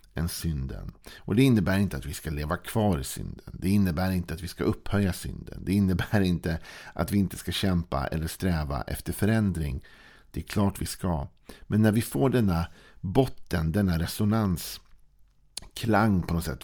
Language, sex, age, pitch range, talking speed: Swedish, male, 50-69, 80-100 Hz, 175 wpm